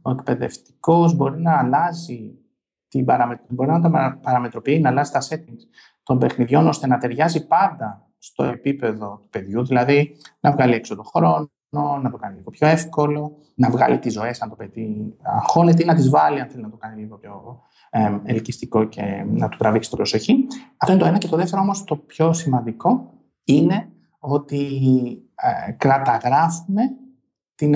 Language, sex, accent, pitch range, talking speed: Greek, male, native, 120-165 Hz, 175 wpm